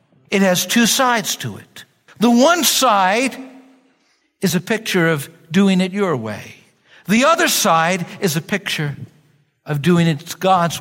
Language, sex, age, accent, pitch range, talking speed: English, male, 60-79, American, 170-260 Hz, 150 wpm